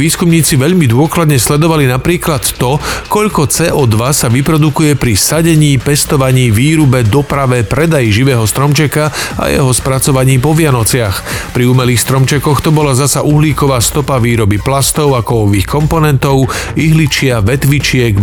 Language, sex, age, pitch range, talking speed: Slovak, male, 40-59, 120-150 Hz, 125 wpm